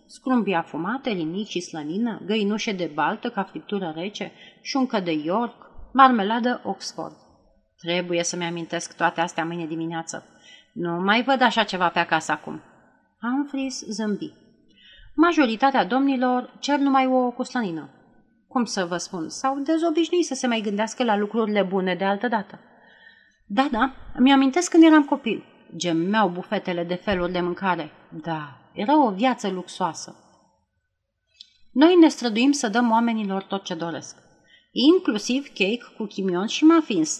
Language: Romanian